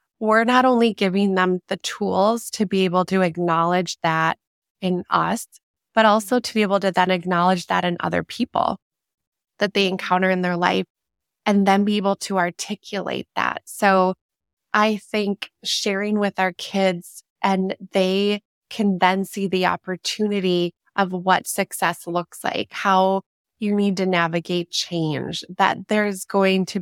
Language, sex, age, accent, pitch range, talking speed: English, female, 20-39, American, 175-200 Hz, 155 wpm